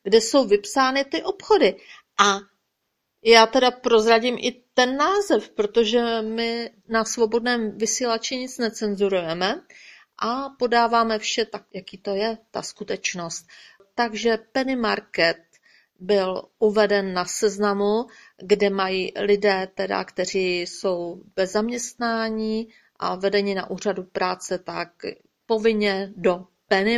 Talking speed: 110 wpm